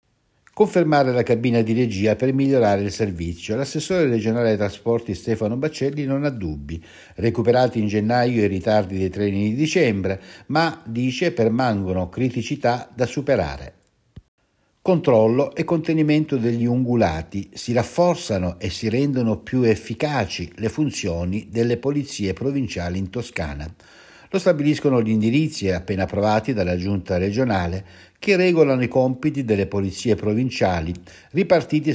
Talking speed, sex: 130 wpm, male